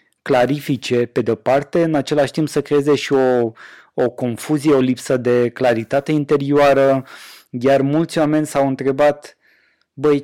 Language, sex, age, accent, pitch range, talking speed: Romanian, male, 20-39, native, 125-150 Hz, 135 wpm